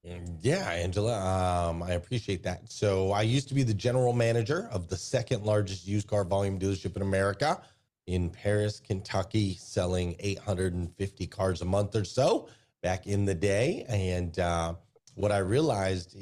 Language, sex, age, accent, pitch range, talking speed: English, male, 30-49, American, 95-120 Hz, 160 wpm